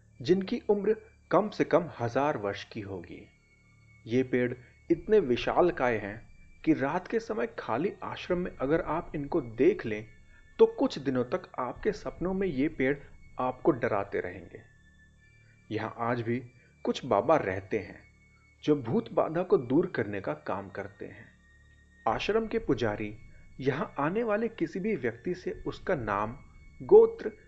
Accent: native